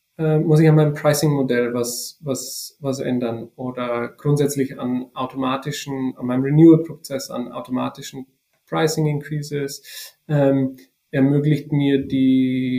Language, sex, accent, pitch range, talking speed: German, male, German, 135-155 Hz, 110 wpm